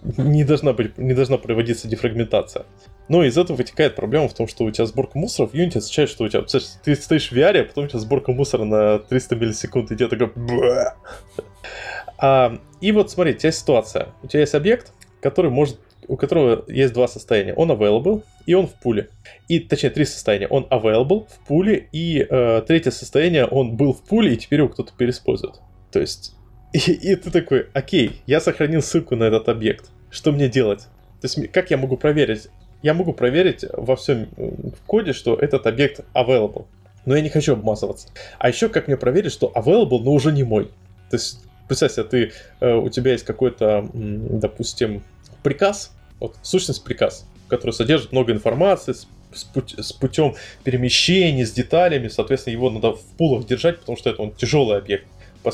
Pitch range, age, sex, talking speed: 110-150 Hz, 20-39, male, 185 wpm